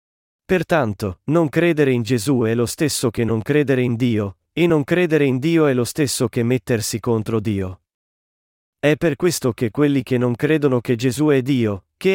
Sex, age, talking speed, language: male, 40-59, 190 wpm, Italian